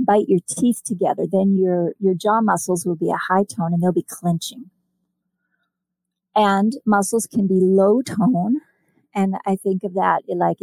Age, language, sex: 40-59, English, female